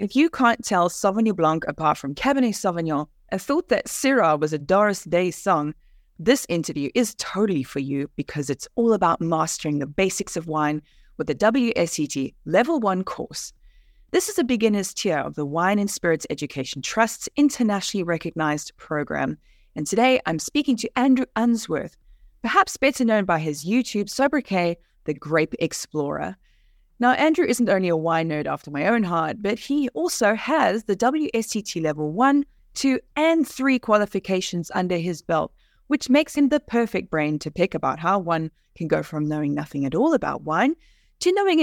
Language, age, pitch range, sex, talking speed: English, 20-39, 155-250 Hz, female, 175 wpm